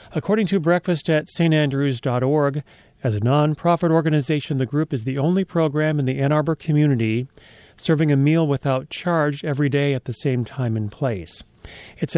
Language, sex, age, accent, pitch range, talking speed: English, male, 40-59, American, 135-170 Hz, 170 wpm